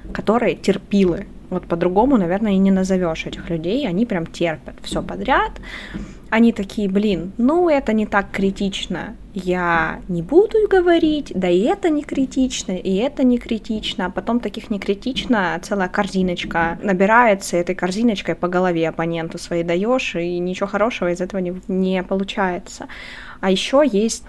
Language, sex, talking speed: Russian, female, 150 wpm